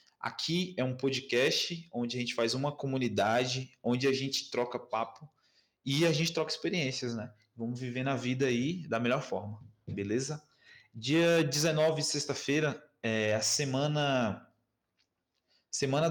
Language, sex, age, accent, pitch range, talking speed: Portuguese, male, 20-39, Brazilian, 120-150 Hz, 140 wpm